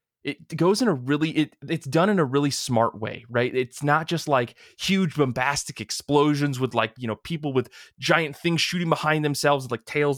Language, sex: English, male